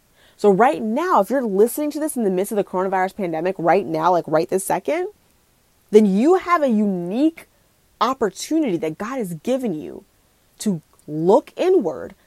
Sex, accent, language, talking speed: female, American, English, 170 wpm